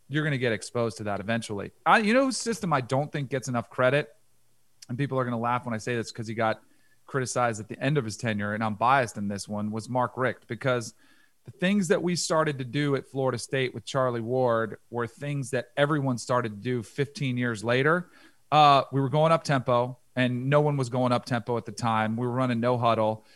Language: English